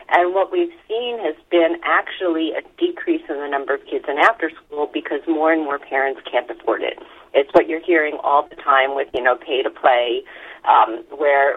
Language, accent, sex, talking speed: English, American, female, 190 wpm